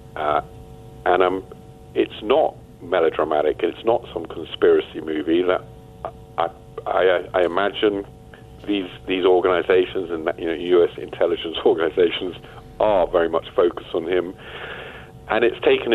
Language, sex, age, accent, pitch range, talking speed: English, male, 50-69, British, 345-430 Hz, 130 wpm